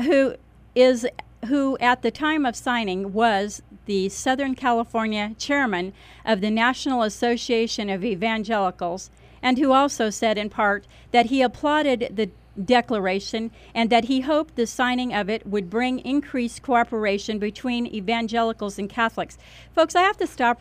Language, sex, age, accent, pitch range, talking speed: English, female, 40-59, American, 205-255 Hz, 150 wpm